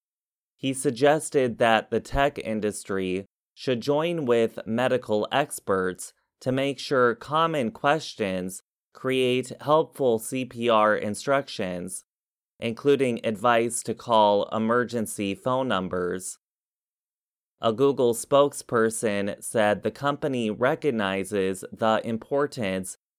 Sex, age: male, 30-49